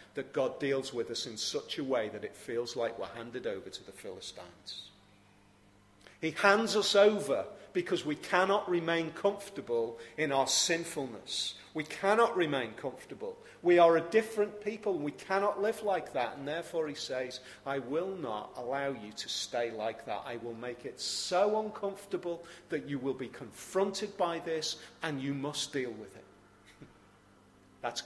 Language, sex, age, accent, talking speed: English, male, 40-59, British, 170 wpm